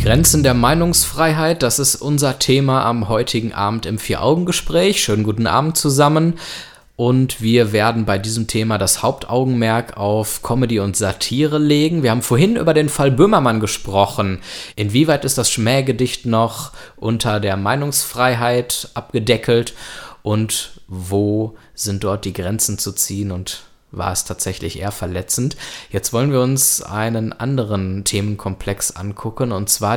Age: 20-39